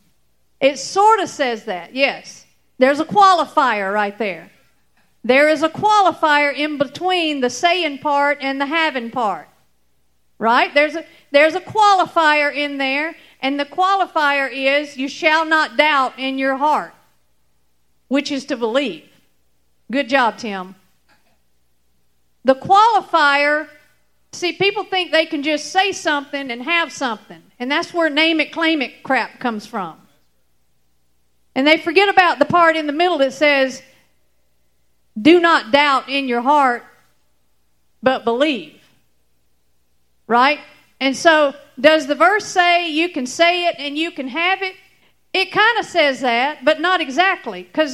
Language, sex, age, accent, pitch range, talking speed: English, female, 50-69, American, 220-330 Hz, 145 wpm